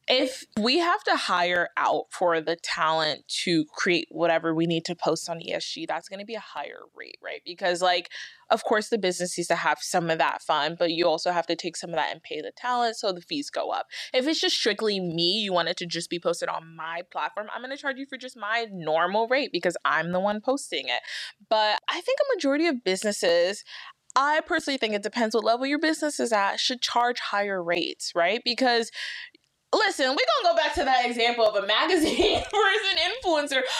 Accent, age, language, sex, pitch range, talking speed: American, 20-39, English, female, 180-295 Hz, 225 wpm